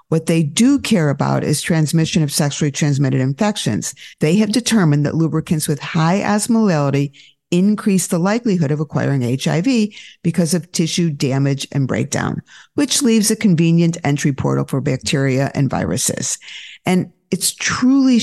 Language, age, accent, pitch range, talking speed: English, 50-69, American, 145-190 Hz, 145 wpm